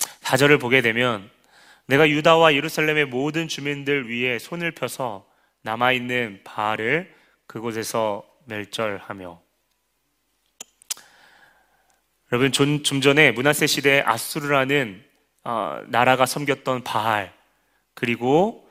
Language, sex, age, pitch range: Korean, male, 30-49, 120-150 Hz